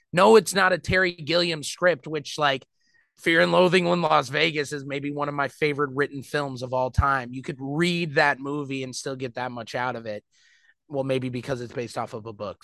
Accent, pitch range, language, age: American, 135-175 Hz, English, 20-39